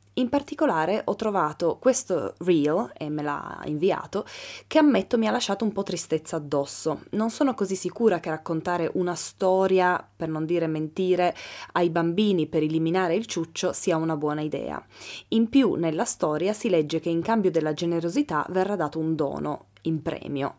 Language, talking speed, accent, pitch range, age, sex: Italian, 170 wpm, native, 160-220 Hz, 20-39, female